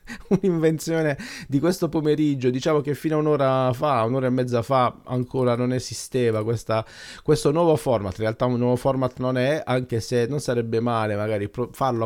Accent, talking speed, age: native, 175 wpm, 30-49